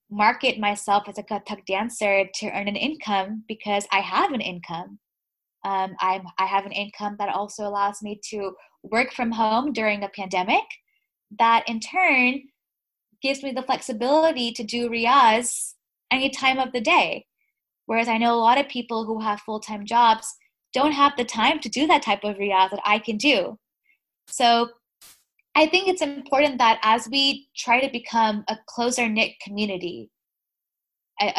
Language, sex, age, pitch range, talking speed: English, female, 10-29, 205-255 Hz, 165 wpm